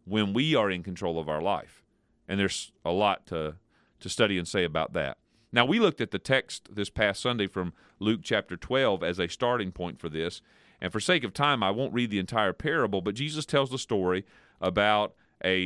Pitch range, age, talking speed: 100-135 Hz, 40-59, 215 wpm